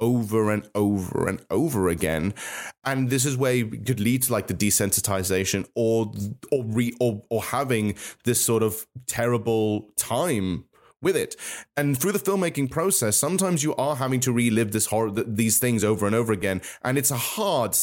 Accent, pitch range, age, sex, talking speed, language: British, 110-140 Hz, 30-49, male, 180 wpm, English